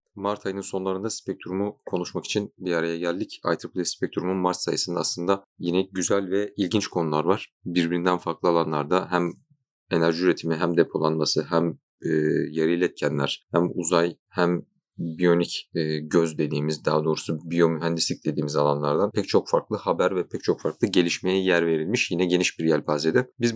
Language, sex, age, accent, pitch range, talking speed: Turkish, male, 40-59, native, 85-100 Hz, 155 wpm